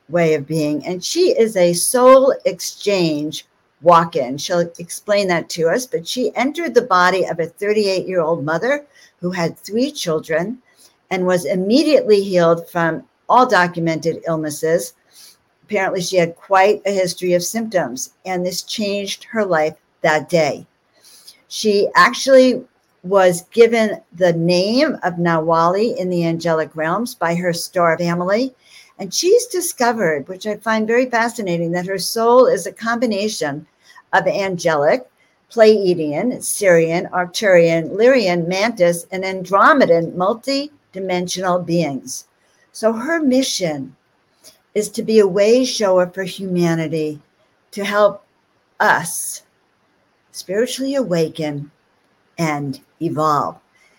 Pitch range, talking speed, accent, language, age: 170-220 Hz, 120 wpm, American, English, 60-79